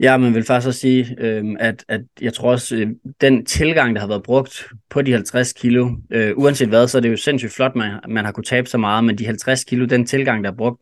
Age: 20-39